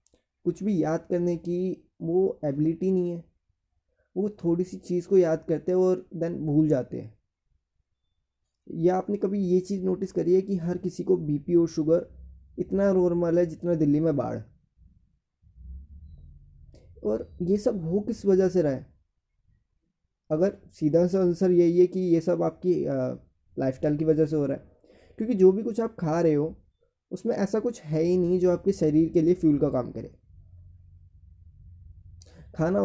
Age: 20-39